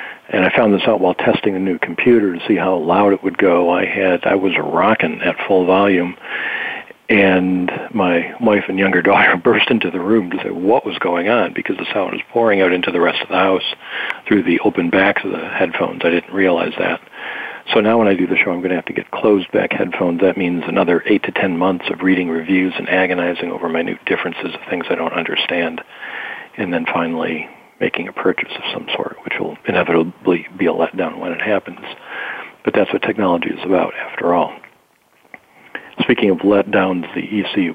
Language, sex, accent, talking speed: English, male, American, 210 wpm